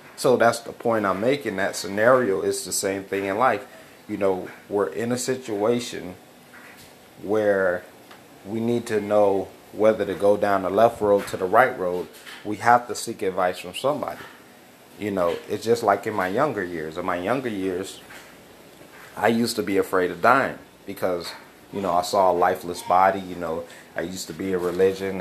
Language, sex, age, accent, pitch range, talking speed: English, male, 30-49, American, 95-105 Hz, 190 wpm